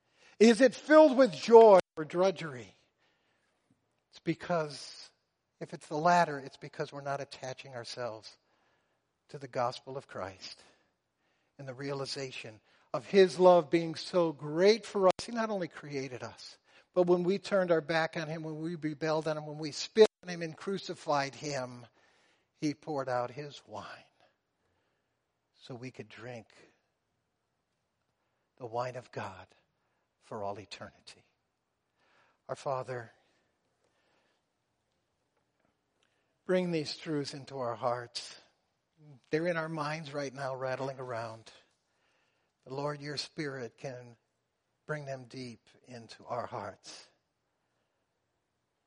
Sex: male